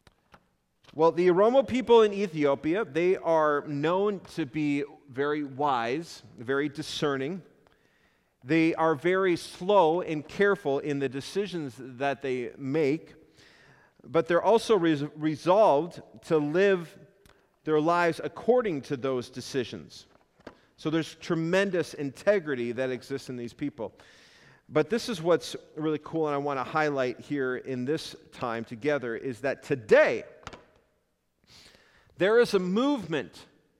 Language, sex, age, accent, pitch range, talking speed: English, male, 40-59, American, 135-175 Hz, 125 wpm